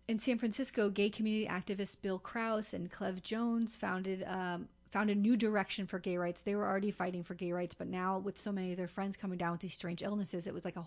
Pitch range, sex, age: 180-215 Hz, female, 30-49